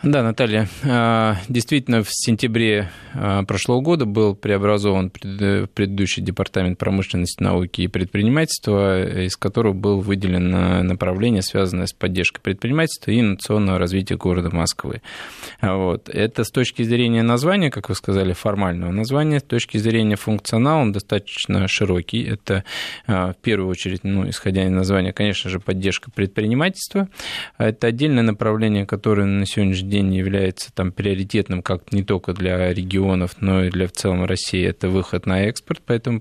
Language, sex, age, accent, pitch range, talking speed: Russian, male, 20-39, native, 95-115 Hz, 140 wpm